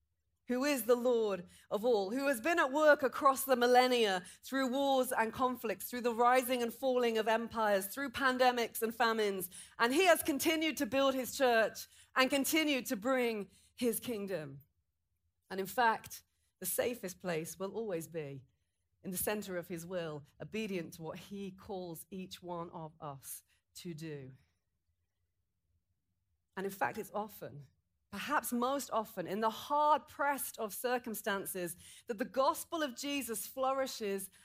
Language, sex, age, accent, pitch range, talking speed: English, female, 40-59, British, 175-255 Hz, 155 wpm